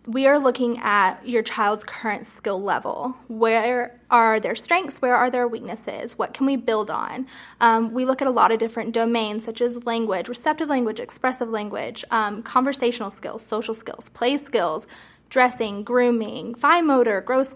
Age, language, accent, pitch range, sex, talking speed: 20-39, English, American, 220-255 Hz, female, 170 wpm